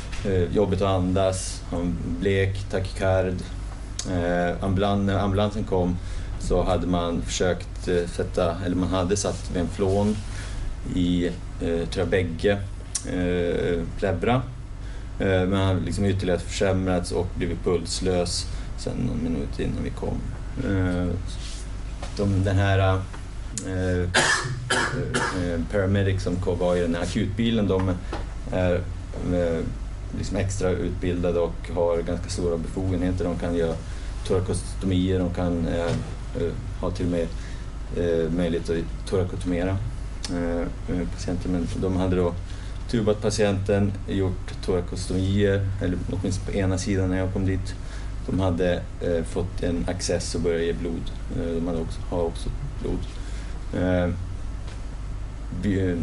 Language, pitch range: Swedish, 90-100 Hz